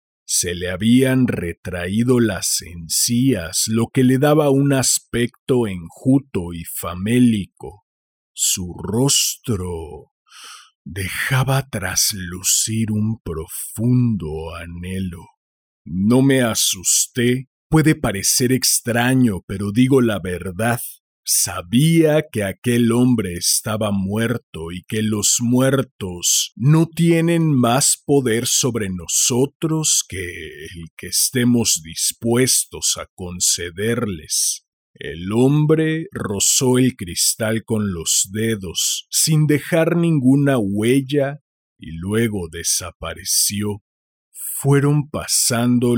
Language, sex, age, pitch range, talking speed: Spanish, male, 40-59, 90-130 Hz, 95 wpm